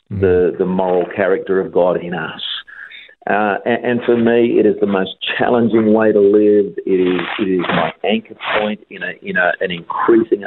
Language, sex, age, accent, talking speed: English, male, 50-69, Australian, 195 wpm